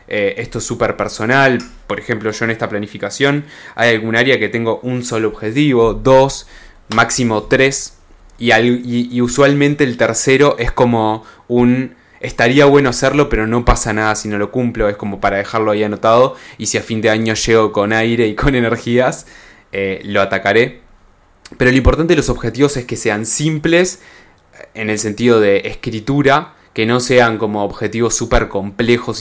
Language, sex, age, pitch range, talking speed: Spanish, male, 20-39, 110-130 Hz, 175 wpm